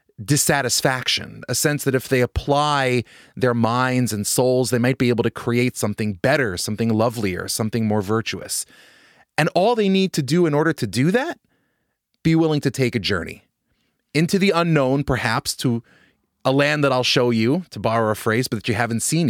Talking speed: 190 wpm